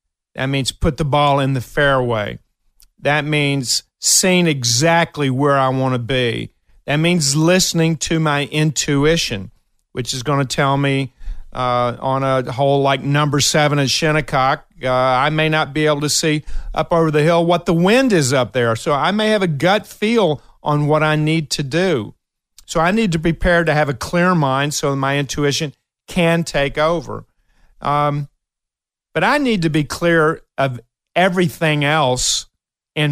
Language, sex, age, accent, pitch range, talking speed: English, male, 50-69, American, 130-160 Hz, 175 wpm